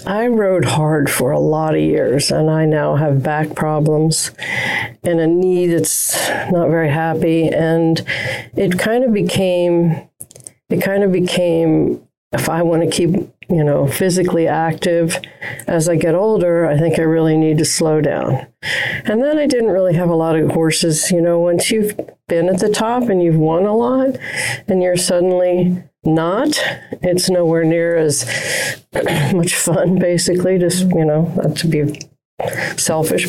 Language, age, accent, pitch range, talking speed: English, 50-69, American, 160-180 Hz, 165 wpm